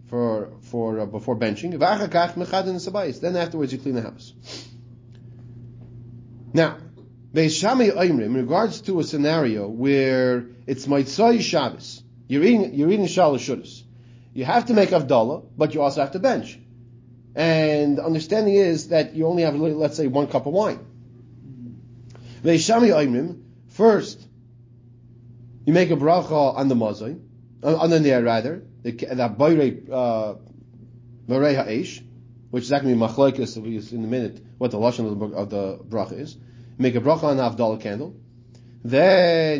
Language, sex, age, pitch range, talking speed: English, male, 30-49, 120-155 Hz, 135 wpm